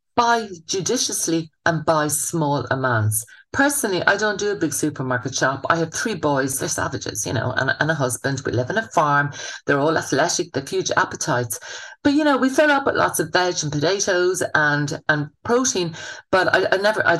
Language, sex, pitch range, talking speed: English, female, 140-185 Hz, 200 wpm